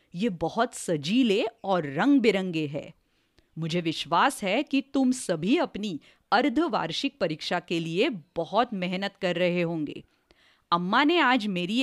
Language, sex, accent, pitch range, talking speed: English, female, Indian, 180-275 Hz, 135 wpm